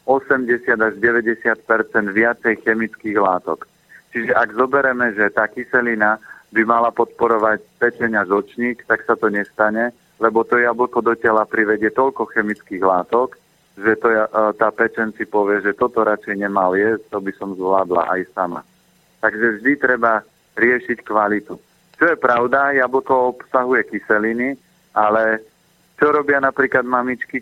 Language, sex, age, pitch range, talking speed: Slovak, male, 40-59, 110-125 Hz, 135 wpm